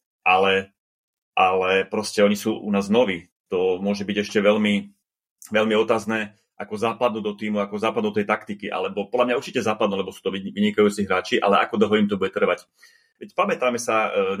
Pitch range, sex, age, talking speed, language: 100-115 Hz, male, 30-49, 190 wpm, Slovak